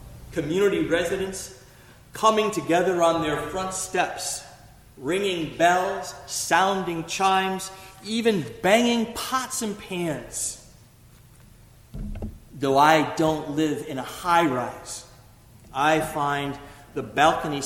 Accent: American